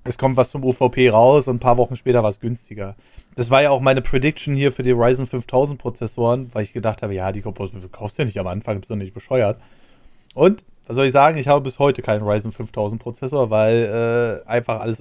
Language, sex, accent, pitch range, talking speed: German, male, German, 115-145 Hz, 235 wpm